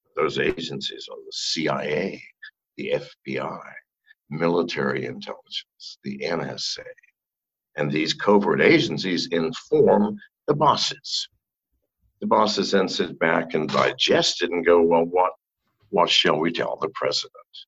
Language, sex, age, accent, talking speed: English, male, 60-79, American, 120 wpm